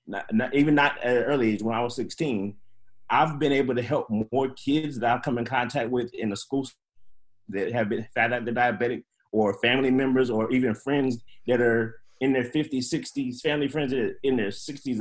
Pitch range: 110-130 Hz